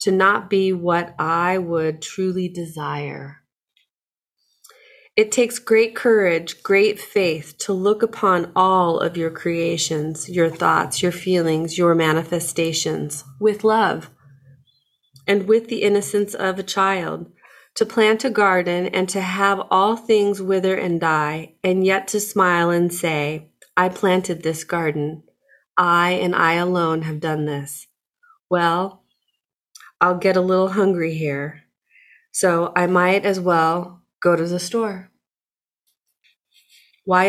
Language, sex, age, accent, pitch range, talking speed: English, female, 30-49, American, 165-200 Hz, 130 wpm